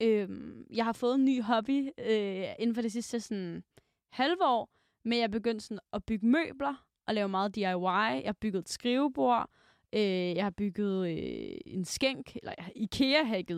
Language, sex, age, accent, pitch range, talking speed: Danish, female, 20-39, native, 195-250 Hz, 185 wpm